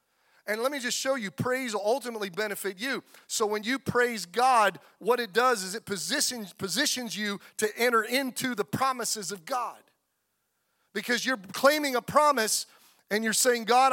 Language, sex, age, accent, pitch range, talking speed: English, male, 40-59, American, 195-250 Hz, 170 wpm